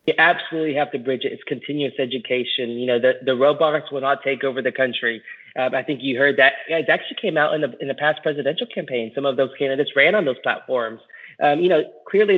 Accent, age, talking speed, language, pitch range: American, 20-39, 240 wpm, English, 125-150 Hz